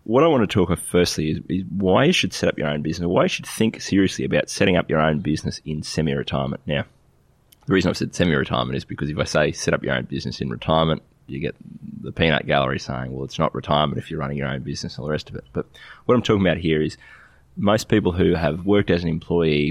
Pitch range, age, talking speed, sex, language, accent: 70-90 Hz, 20-39, 260 wpm, male, English, Australian